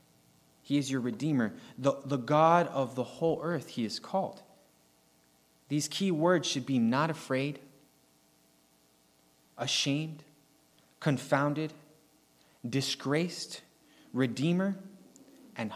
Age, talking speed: 20-39, 100 wpm